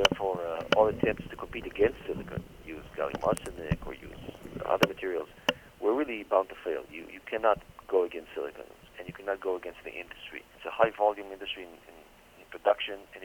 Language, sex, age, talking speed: English, male, 40-59, 195 wpm